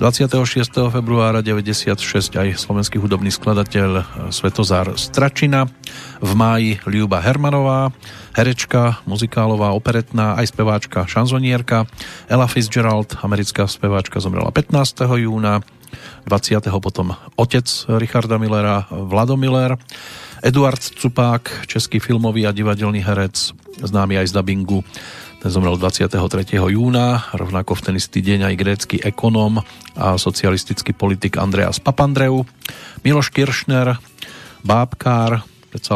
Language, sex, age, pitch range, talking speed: Slovak, male, 40-59, 100-125 Hz, 110 wpm